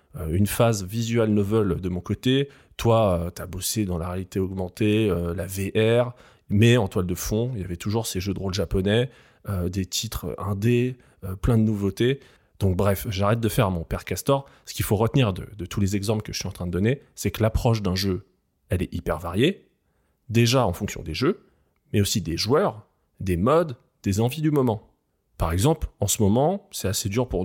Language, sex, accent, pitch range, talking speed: French, male, French, 95-115 Hz, 210 wpm